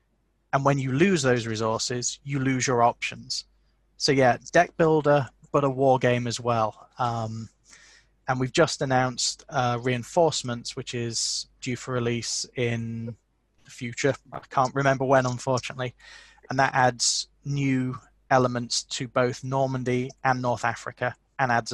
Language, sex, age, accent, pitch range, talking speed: English, male, 20-39, British, 120-150 Hz, 145 wpm